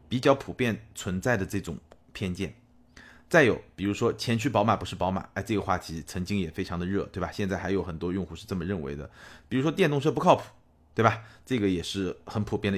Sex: male